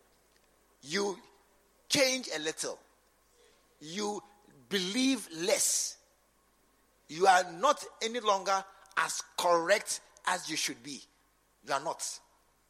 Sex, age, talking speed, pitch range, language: male, 50-69, 100 wpm, 195-275 Hz, English